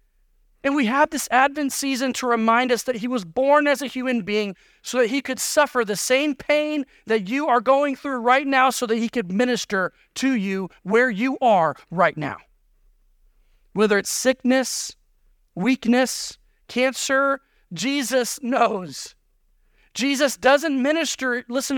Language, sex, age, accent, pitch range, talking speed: English, male, 40-59, American, 180-260 Hz, 150 wpm